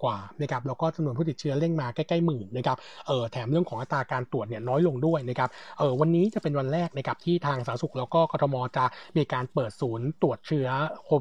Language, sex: Thai, male